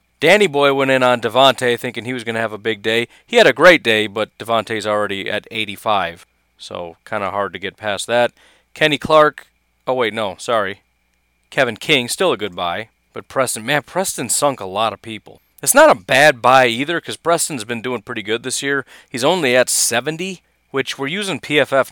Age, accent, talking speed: 40-59, American, 210 wpm